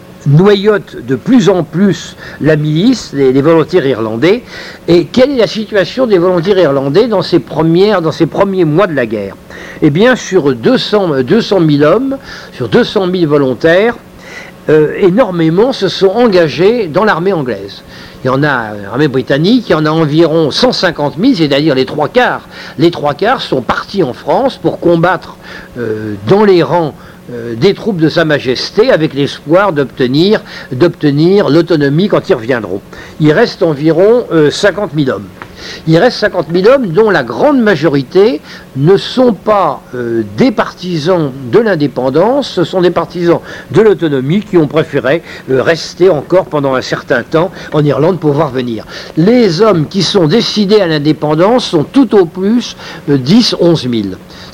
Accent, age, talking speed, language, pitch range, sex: French, 60-79, 160 wpm, French, 145-195 Hz, male